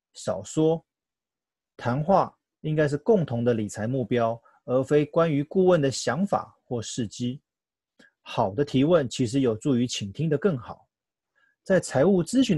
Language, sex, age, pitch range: Chinese, male, 30-49, 120-180 Hz